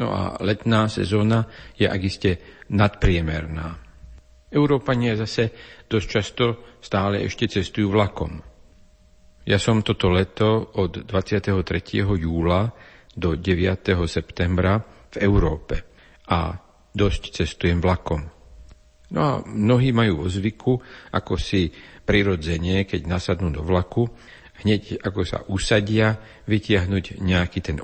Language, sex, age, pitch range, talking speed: Slovak, male, 50-69, 90-105 Hz, 110 wpm